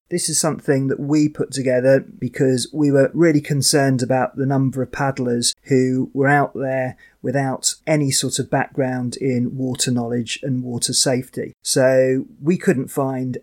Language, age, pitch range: English, 30-49, 125-145 Hz